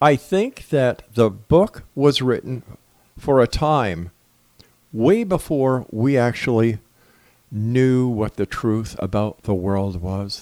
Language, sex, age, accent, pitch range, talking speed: English, male, 50-69, American, 105-140 Hz, 125 wpm